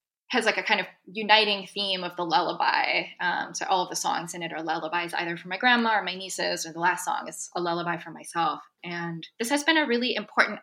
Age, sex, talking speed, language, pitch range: 20-39, female, 245 wpm, English, 175-210 Hz